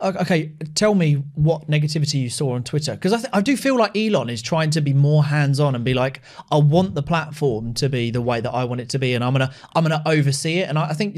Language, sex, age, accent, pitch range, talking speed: English, male, 30-49, British, 125-165 Hz, 280 wpm